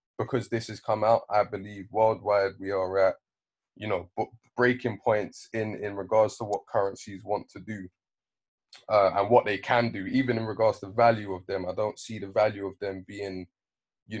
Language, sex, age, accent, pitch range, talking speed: English, male, 20-39, British, 95-110 Hz, 200 wpm